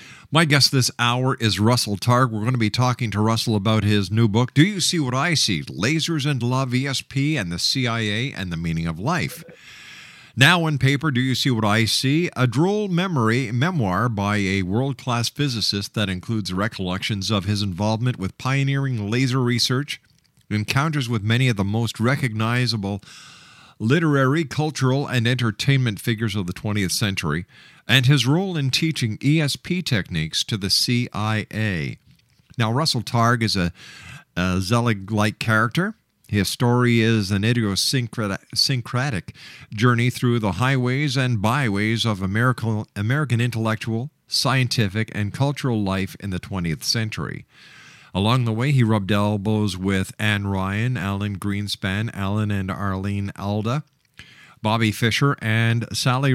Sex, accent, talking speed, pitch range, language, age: male, American, 150 wpm, 105-130 Hz, English, 50-69